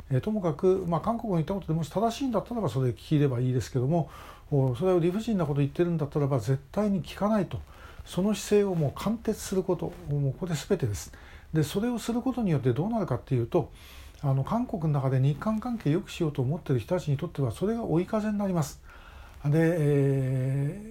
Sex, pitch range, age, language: male, 140-190 Hz, 60-79, Japanese